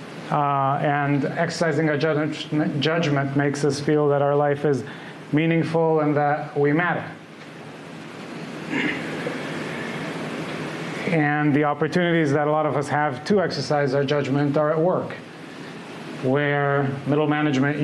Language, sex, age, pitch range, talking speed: English, male, 30-49, 135-155 Hz, 120 wpm